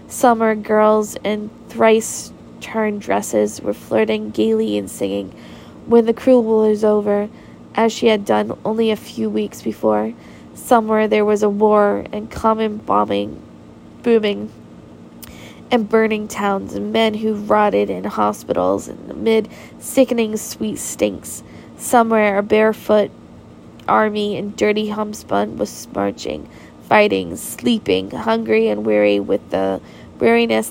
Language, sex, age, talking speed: English, female, 10-29, 125 wpm